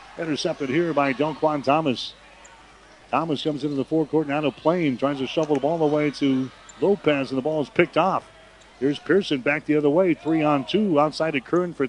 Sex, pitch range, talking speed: male, 135-160 Hz, 215 wpm